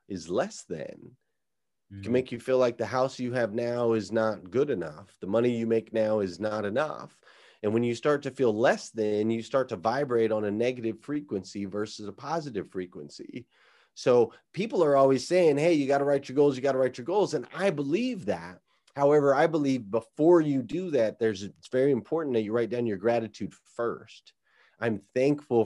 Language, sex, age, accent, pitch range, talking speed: English, male, 30-49, American, 110-140 Hz, 205 wpm